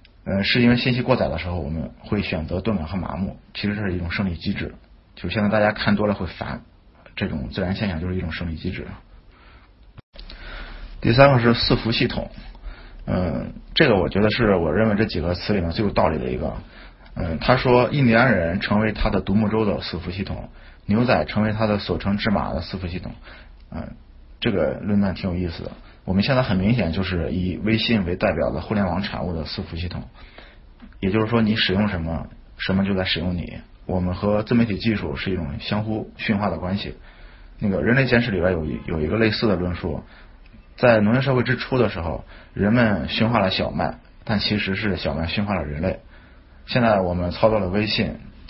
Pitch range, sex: 90-110 Hz, male